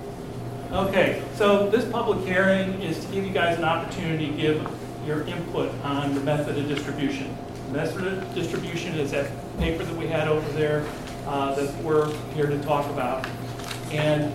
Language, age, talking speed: English, 40-59, 170 wpm